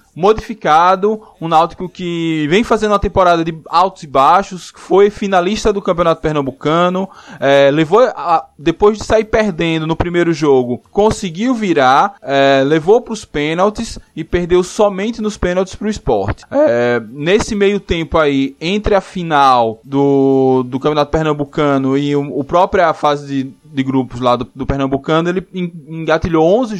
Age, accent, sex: 20-39, Brazilian, male